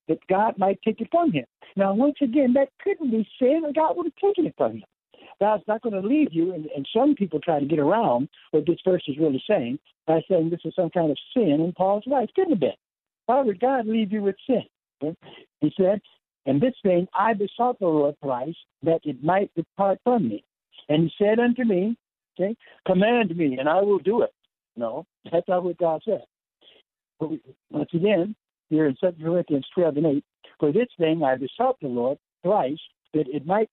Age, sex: 60-79, male